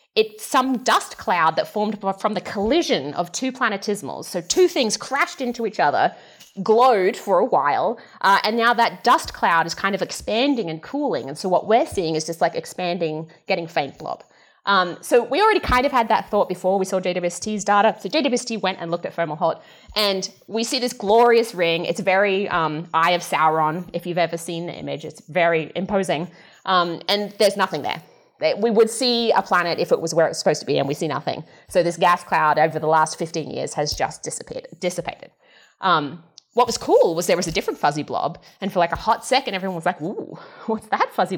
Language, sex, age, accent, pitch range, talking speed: English, female, 20-39, Australian, 170-235 Hz, 215 wpm